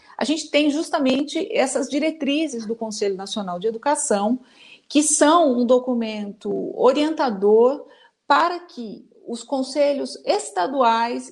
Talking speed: 110 wpm